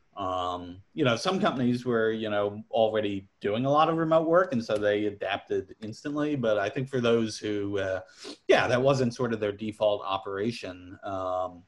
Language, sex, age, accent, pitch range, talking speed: English, male, 30-49, American, 95-125 Hz, 185 wpm